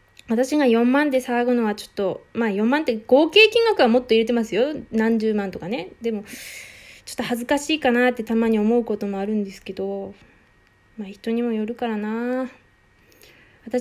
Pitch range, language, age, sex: 210-255 Hz, Japanese, 20-39, female